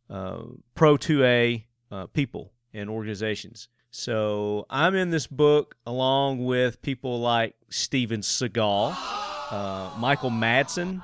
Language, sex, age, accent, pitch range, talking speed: English, male, 30-49, American, 110-145 Hz, 115 wpm